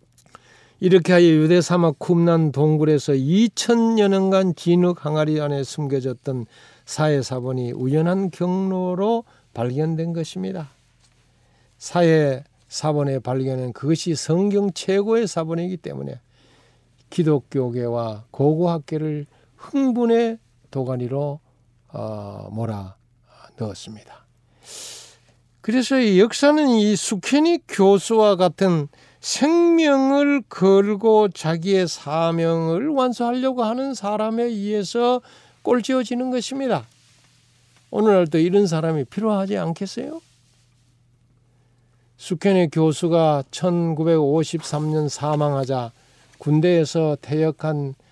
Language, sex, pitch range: Korean, male, 130-190 Hz